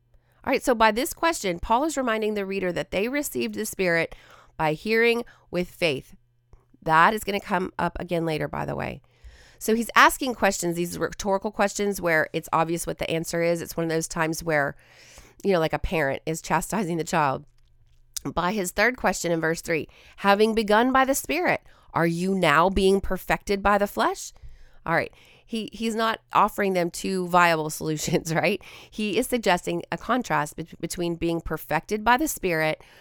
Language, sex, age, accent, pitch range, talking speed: English, female, 30-49, American, 160-210 Hz, 185 wpm